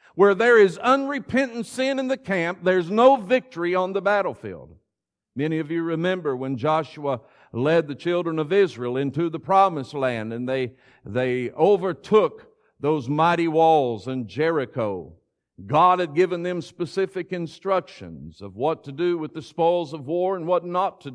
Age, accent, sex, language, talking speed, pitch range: 50-69, American, male, English, 160 wpm, 130-180 Hz